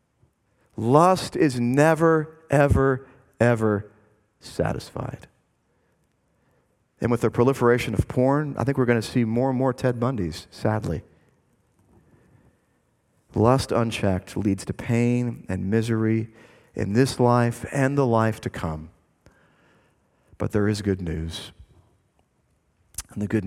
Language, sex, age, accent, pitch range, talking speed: English, male, 40-59, American, 105-140 Hz, 120 wpm